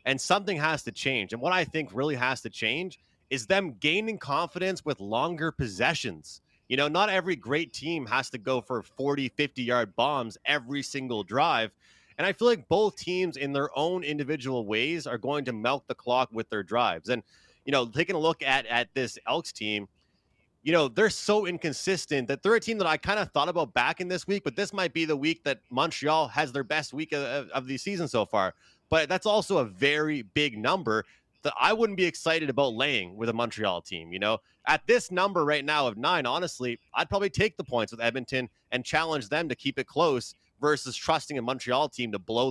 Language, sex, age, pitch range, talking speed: English, male, 30-49, 125-165 Hz, 215 wpm